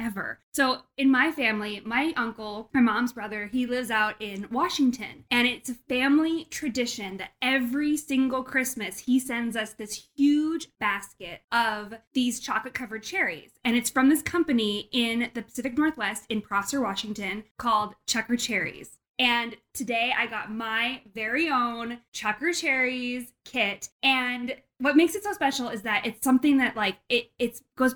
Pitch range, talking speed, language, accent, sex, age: 225-270 Hz, 160 wpm, English, American, female, 20-39